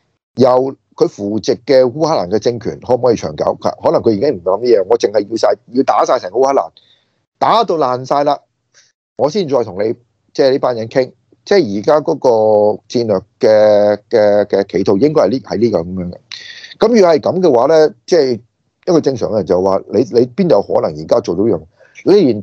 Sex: male